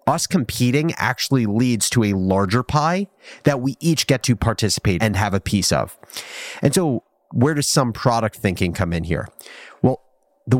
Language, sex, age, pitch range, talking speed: English, male, 30-49, 95-135 Hz, 175 wpm